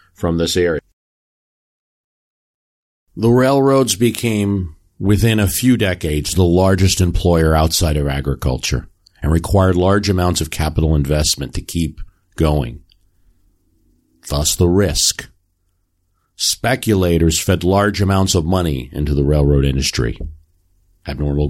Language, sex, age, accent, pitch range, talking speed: English, male, 50-69, American, 80-95 Hz, 110 wpm